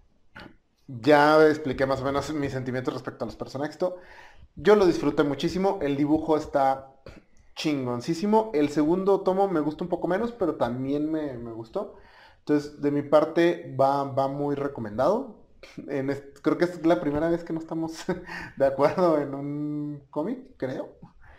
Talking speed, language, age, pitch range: 160 wpm, Spanish, 30-49, 130-165 Hz